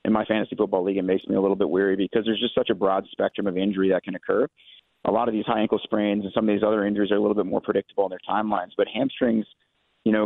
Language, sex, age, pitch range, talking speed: English, male, 30-49, 100-110 Hz, 290 wpm